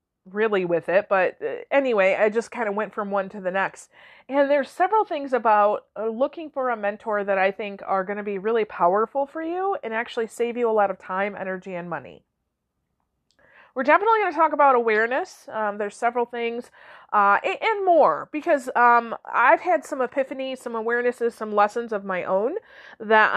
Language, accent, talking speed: English, American, 190 wpm